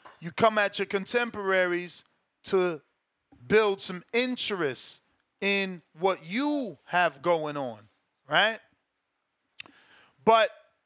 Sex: male